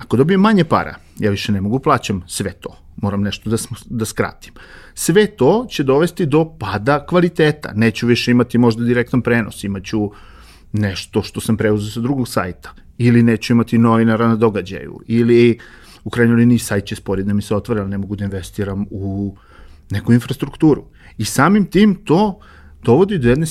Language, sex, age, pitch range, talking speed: English, male, 40-59, 100-130 Hz, 180 wpm